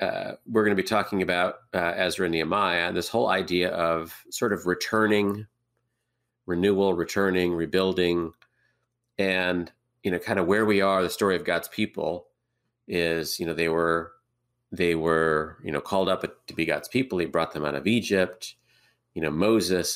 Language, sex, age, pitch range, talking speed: English, male, 30-49, 80-100 Hz, 175 wpm